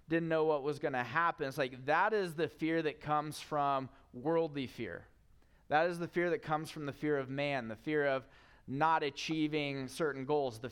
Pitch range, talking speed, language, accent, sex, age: 120-150 Hz, 205 wpm, English, American, male, 30-49